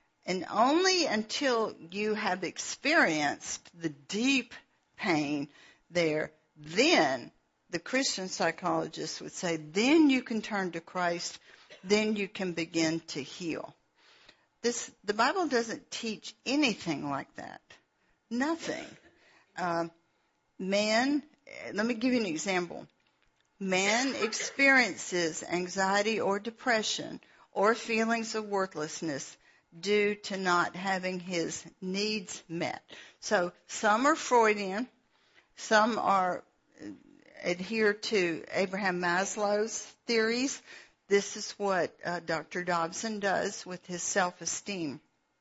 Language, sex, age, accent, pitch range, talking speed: English, female, 50-69, American, 175-230 Hz, 110 wpm